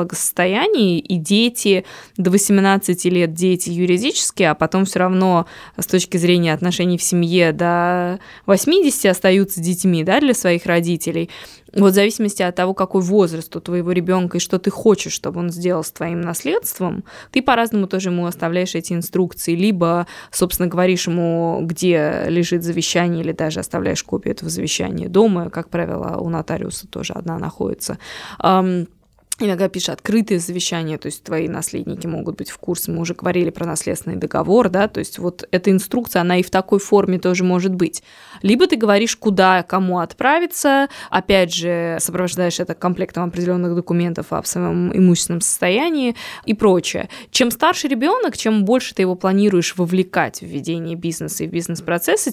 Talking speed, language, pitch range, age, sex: 160 wpm, Russian, 175-200 Hz, 20-39, female